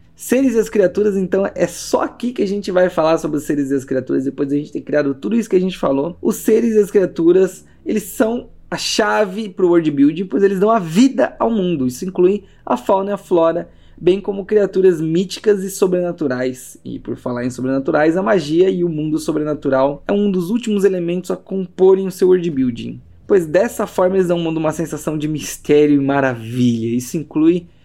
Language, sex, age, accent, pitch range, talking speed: Portuguese, male, 20-39, Brazilian, 150-200 Hz, 215 wpm